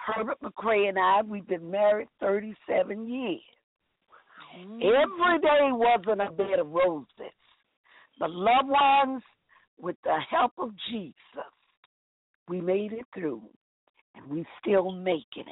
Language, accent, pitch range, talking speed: English, American, 190-265 Hz, 125 wpm